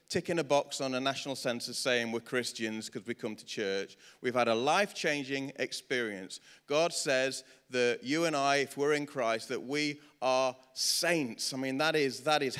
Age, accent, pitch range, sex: 30-49, British, 130-175 Hz, male